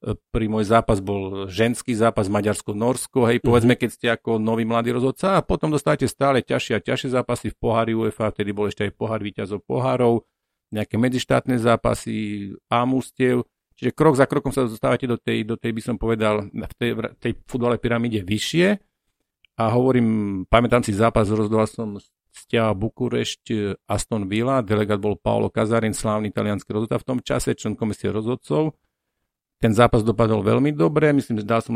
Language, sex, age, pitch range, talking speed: Slovak, male, 50-69, 110-130 Hz, 170 wpm